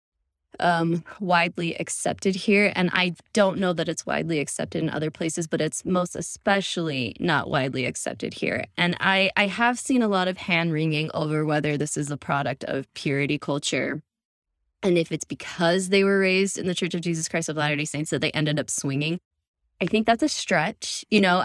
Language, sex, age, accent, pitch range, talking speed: English, female, 20-39, American, 150-195 Hz, 200 wpm